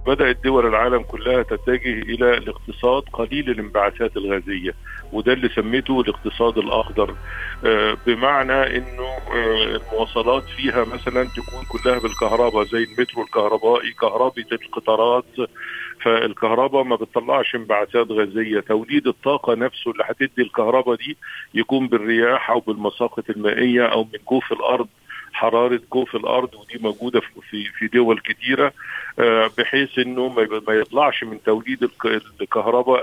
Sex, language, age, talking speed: male, Arabic, 50-69, 115 wpm